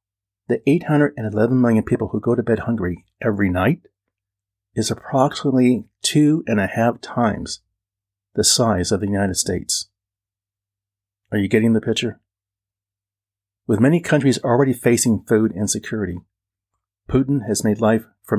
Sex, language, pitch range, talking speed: male, English, 100-125 Hz, 135 wpm